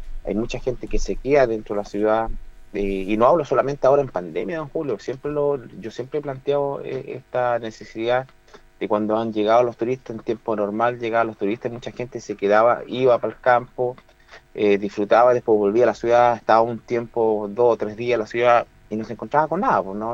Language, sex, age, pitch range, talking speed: Spanish, male, 30-49, 105-135 Hz, 220 wpm